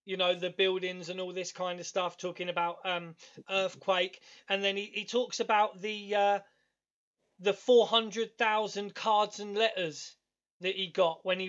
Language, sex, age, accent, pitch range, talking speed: English, male, 20-39, British, 185-220 Hz, 180 wpm